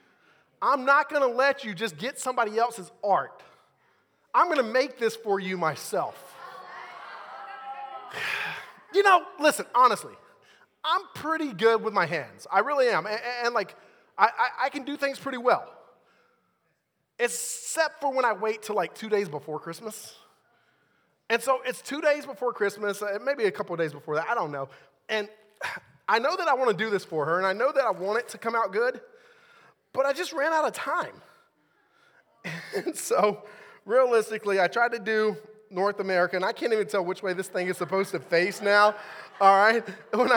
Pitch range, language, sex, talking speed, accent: 200-260 Hz, English, male, 185 wpm, American